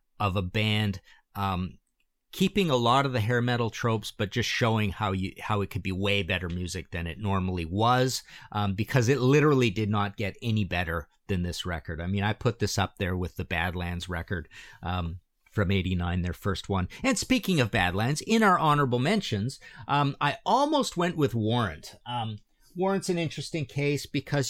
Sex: male